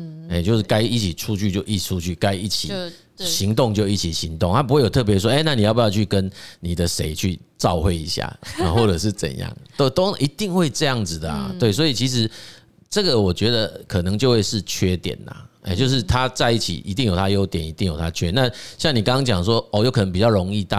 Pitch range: 90-115 Hz